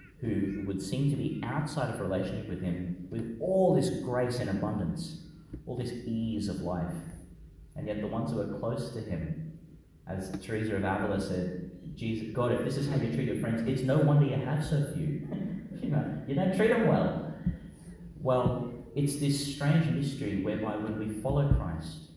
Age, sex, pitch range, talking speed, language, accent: 30-49, male, 100-140 Hz, 185 wpm, English, Australian